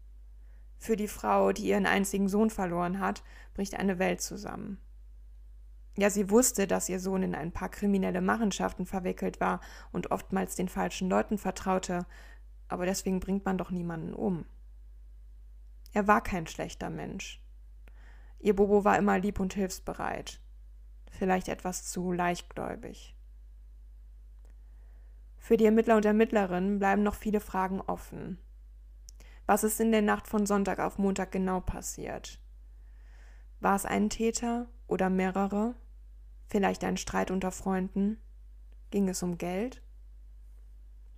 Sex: female